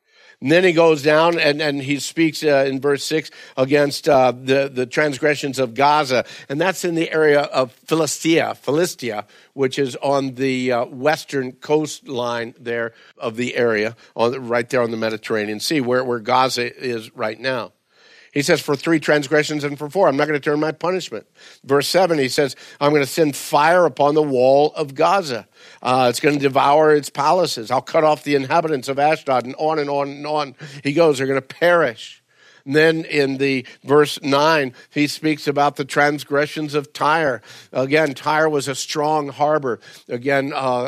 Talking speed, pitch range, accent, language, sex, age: 180 wpm, 130-155 Hz, American, English, male, 50-69